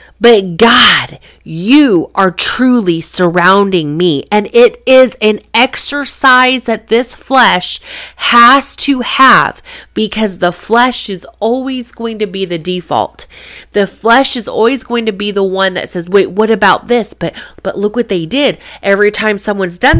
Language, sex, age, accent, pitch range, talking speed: English, female, 30-49, American, 190-240 Hz, 160 wpm